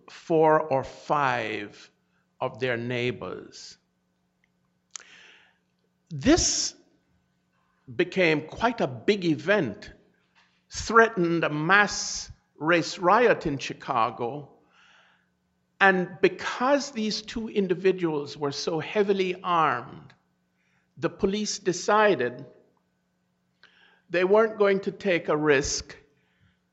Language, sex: English, male